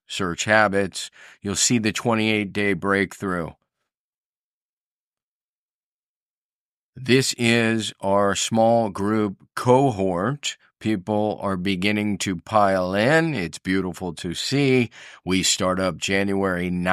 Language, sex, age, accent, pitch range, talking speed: English, male, 40-59, American, 95-115 Hz, 95 wpm